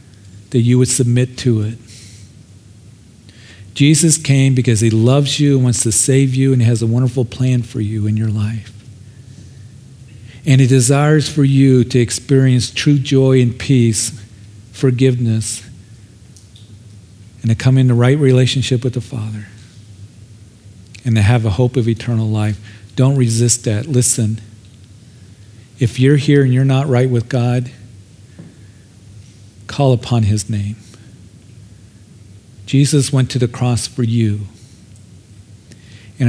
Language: English